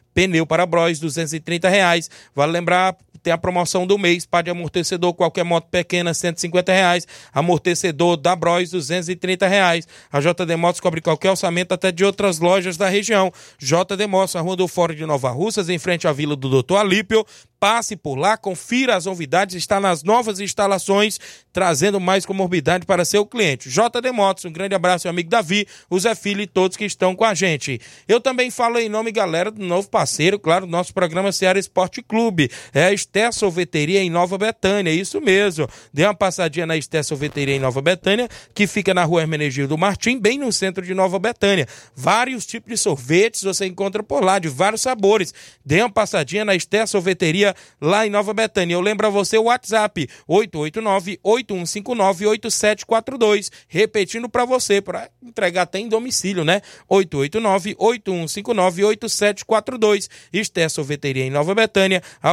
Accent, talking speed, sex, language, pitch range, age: Brazilian, 170 wpm, male, Portuguese, 170-205 Hz, 20-39